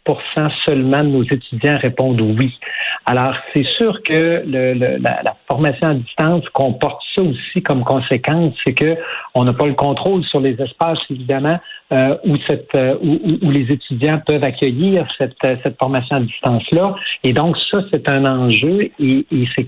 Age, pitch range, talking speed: 60-79, 130-160 Hz, 180 wpm